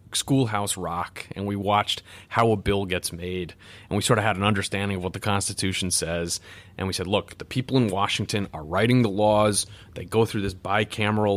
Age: 30-49